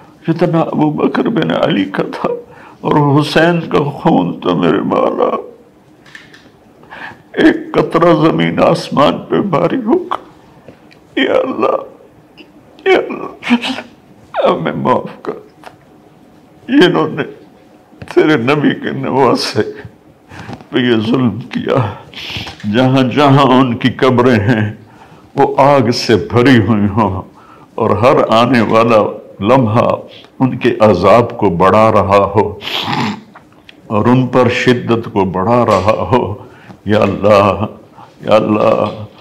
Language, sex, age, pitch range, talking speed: Urdu, male, 60-79, 110-160 Hz, 105 wpm